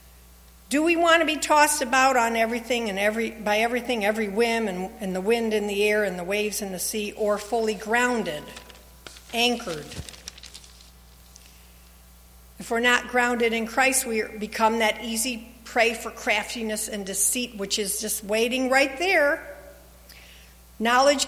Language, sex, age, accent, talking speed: English, female, 50-69, American, 150 wpm